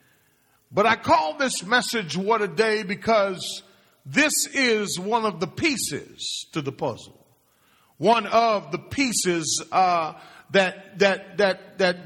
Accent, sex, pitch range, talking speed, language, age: American, male, 185-245 Hz, 135 wpm, English, 40-59